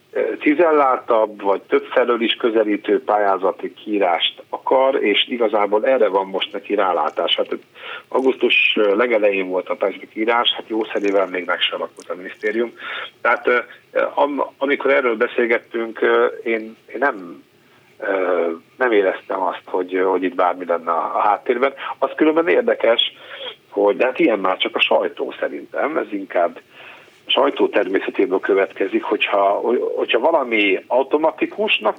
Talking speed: 125 wpm